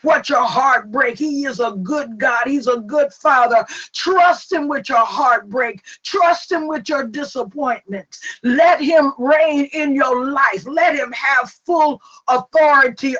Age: 50-69